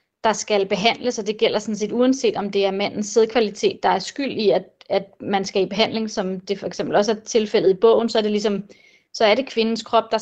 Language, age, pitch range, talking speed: Danish, 30-49, 205-230 Hz, 255 wpm